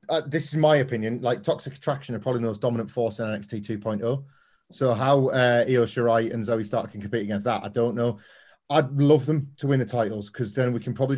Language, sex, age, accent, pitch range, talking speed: English, male, 30-49, British, 110-135 Hz, 235 wpm